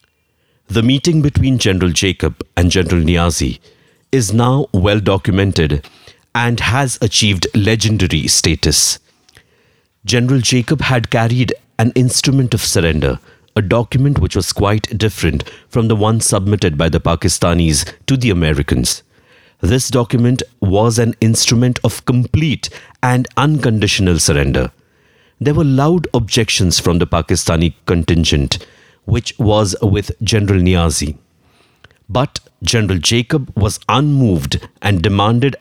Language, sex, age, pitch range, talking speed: English, male, 50-69, 90-120 Hz, 120 wpm